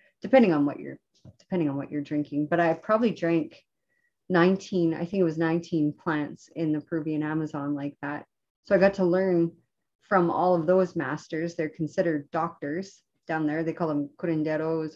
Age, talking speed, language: 30-49, 180 wpm, English